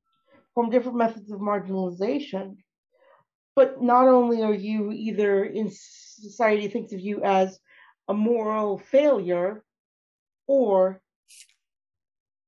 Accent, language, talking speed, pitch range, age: American, English, 100 wpm, 205-255 Hz, 40-59